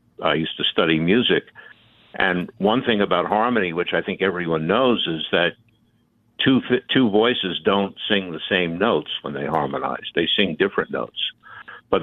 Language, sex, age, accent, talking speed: English, male, 60-79, American, 170 wpm